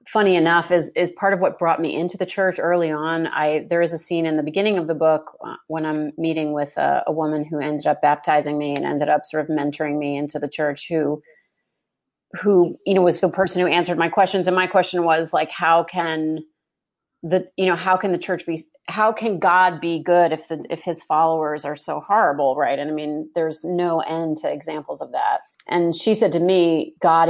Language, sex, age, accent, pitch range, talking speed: English, female, 30-49, American, 155-190 Hz, 225 wpm